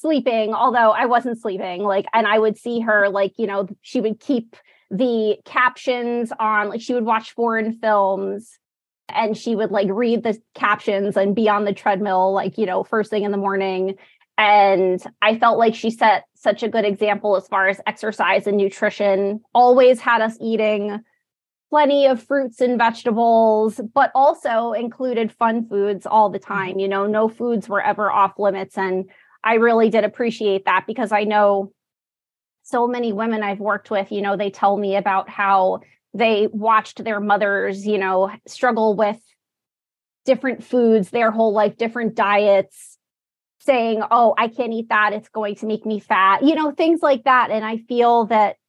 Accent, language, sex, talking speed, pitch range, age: American, English, female, 180 wpm, 200-230 Hz, 20-39